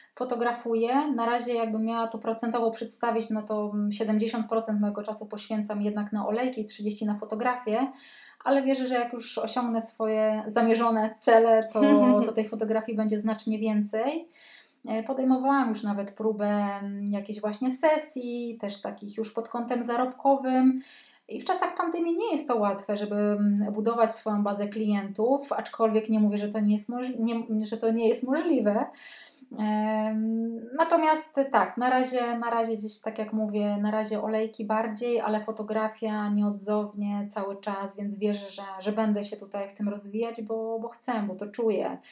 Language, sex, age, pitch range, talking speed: Polish, female, 20-39, 210-240 Hz, 155 wpm